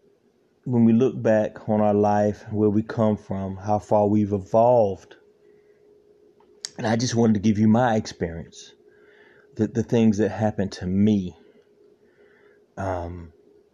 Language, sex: English, male